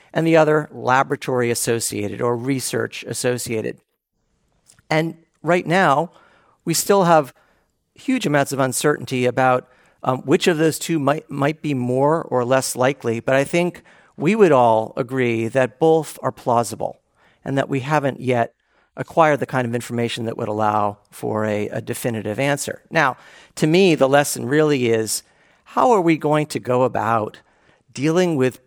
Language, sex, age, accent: English, male, 50-69, American